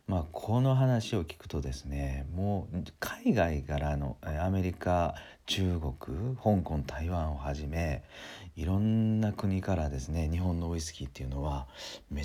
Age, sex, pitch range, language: 40-59, male, 75-100 Hz, Japanese